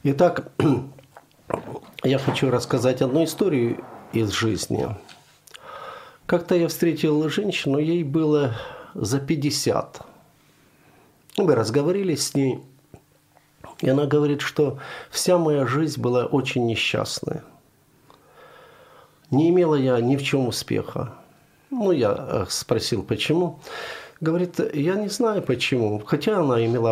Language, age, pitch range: Ukrainian, 50-69, 125-165 Hz